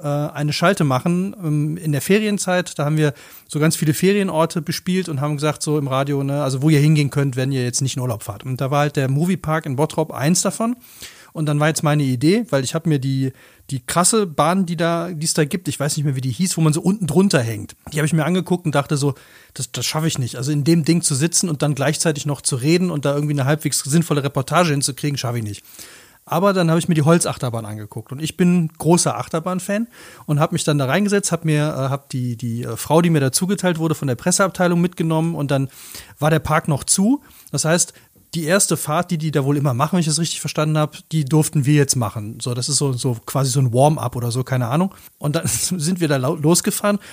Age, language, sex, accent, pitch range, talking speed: 30-49, German, male, German, 140-170 Hz, 245 wpm